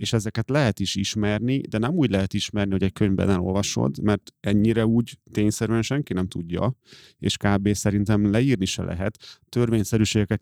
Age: 30-49